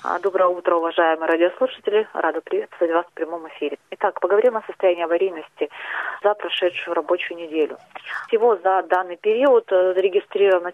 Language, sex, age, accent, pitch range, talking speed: Russian, female, 30-49, native, 170-210 Hz, 135 wpm